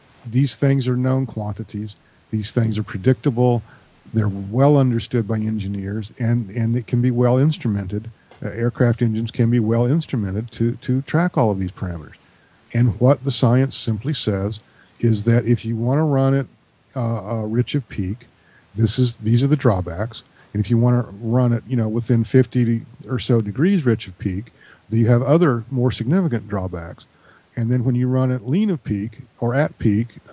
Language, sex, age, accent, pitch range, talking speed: English, male, 50-69, American, 110-130 Hz, 190 wpm